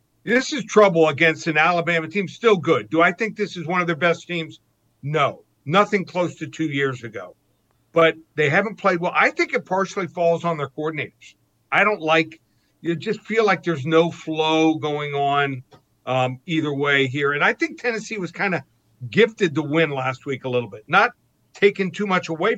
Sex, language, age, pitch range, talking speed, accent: male, English, 50-69, 140-180 Hz, 200 wpm, American